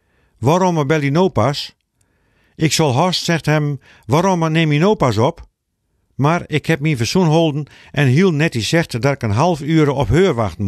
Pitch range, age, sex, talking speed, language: 110-165 Hz, 50-69, male, 190 wpm, Dutch